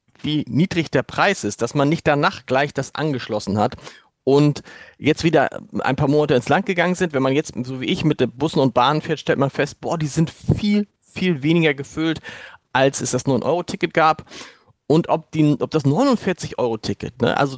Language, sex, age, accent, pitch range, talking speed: German, male, 40-59, German, 130-170 Hz, 190 wpm